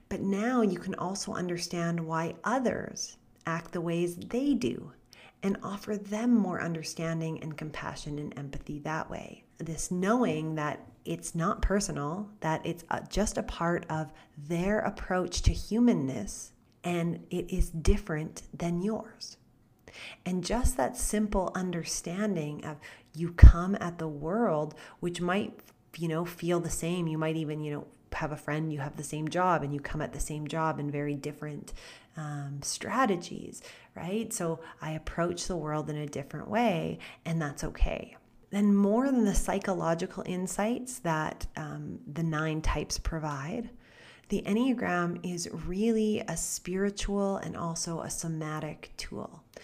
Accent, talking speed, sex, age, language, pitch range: American, 150 wpm, female, 30-49, English, 155-195 Hz